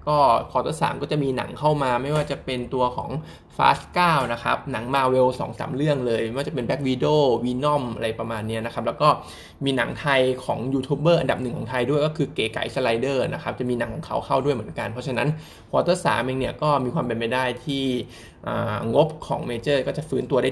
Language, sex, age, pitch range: Thai, male, 20-39, 120-150 Hz